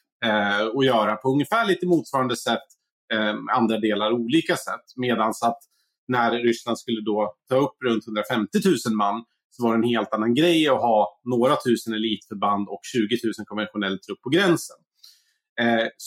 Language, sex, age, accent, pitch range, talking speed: Swedish, male, 30-49, Norwegian, 110-160 Hz, 165 wpm